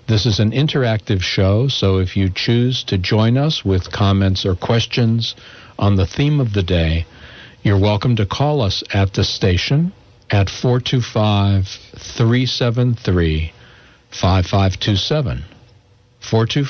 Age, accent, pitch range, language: 60-79, American, 95-120 Hz, English